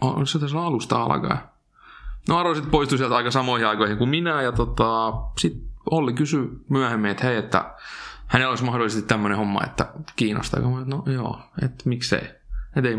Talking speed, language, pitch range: 175 wpm, Finnish, 105-125 Hz